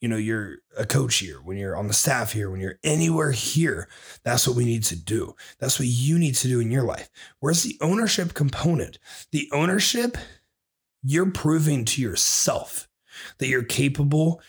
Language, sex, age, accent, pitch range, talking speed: English, male, 30-49, American, 115-150 Hz, 180 wpm